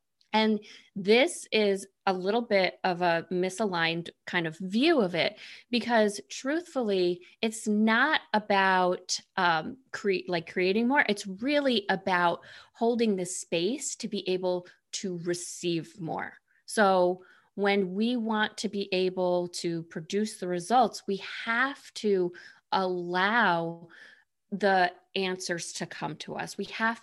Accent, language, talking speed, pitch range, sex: American, English, 130 wpm, 175-210 Hz, female